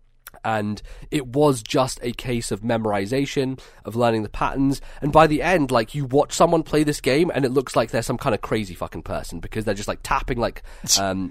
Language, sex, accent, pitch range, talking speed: English, male, British, 105-135 Hz, 220 wpm